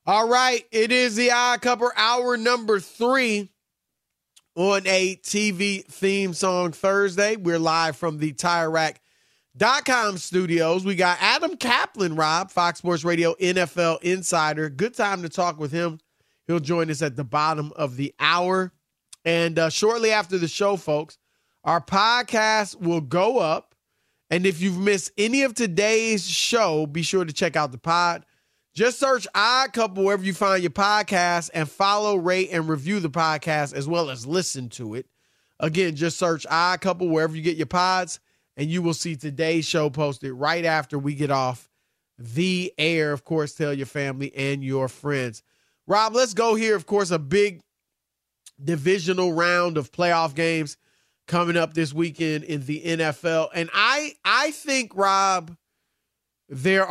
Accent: American